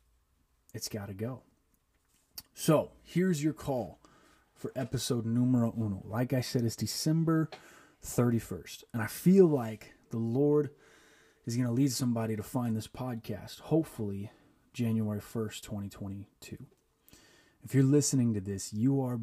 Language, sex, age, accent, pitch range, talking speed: English, male, 30-49, American, 105-130 Hz, 135 wpm